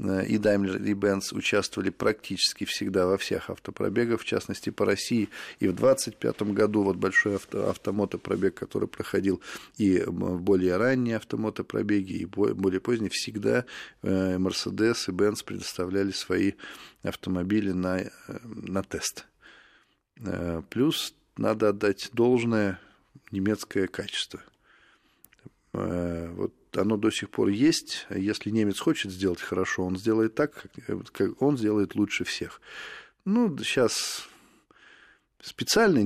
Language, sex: Russian, male